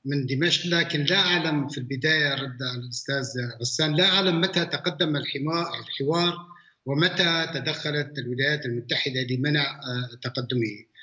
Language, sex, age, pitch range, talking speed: Arabic, male, 60-79, 140-175 Hz, 115 wpm